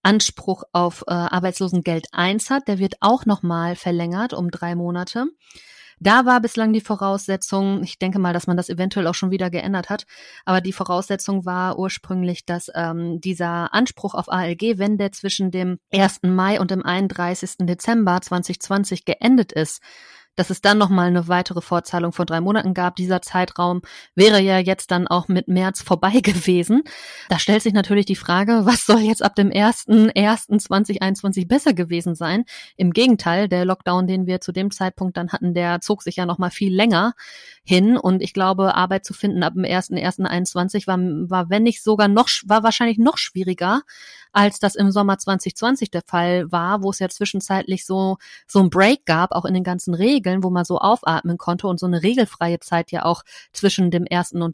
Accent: German